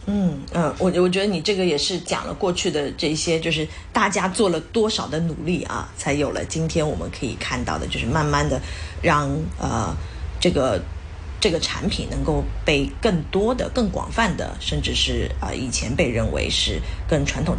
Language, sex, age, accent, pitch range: Chinese, female, 30-49, native, 140-205 Hz